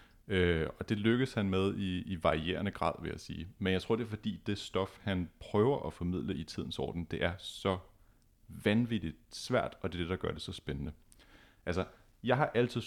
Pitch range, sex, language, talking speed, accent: 85-110 Hz, male, Danish, 215 wpm, native